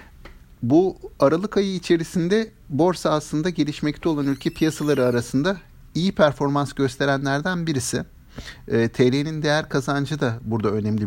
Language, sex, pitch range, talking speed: Turkish, male, 110-165 Hz, 120 wpm